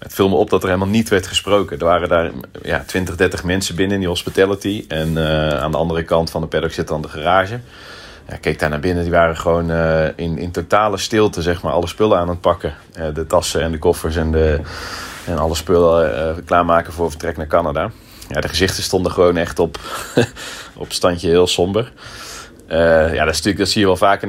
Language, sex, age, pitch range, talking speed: Dutch, male, 30-49, 85-100 Hz, 230 wpm